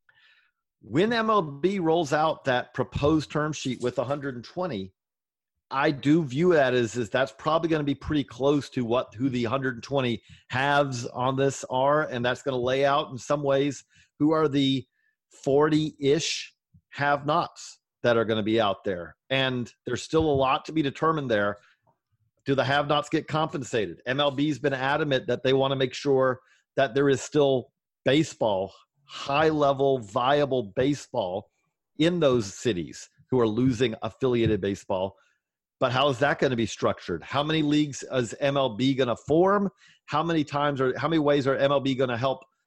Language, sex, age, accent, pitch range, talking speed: English, male, 40-59, American, 125-145 Hz, 170 wpm